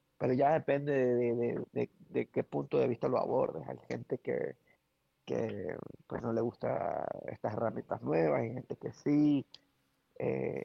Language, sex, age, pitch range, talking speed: Spanish, male, 30-49, 115-130 Hz, 170 wpm